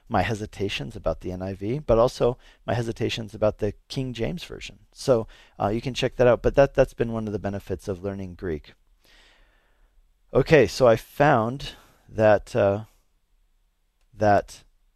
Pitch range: 95-125 Hz